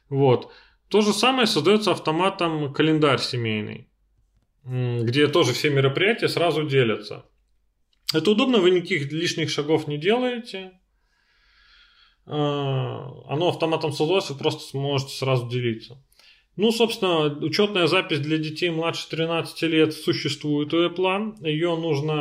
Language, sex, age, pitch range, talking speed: Russian, male, 30-49, 135-170 Hz, 120 wpm